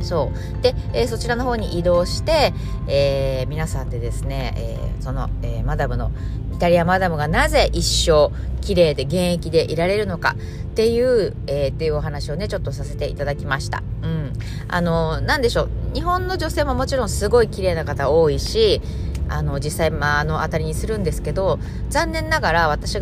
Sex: female